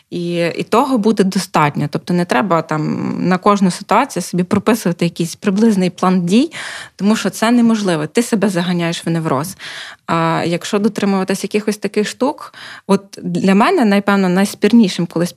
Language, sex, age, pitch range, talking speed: Ukrainian, female, 20-39, 175-210 Hz, 150 wpm